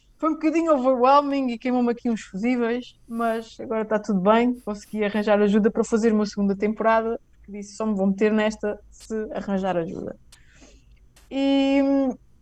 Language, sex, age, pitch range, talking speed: Portuguese, female, 20-39, 205-245 Hz, 160 wpm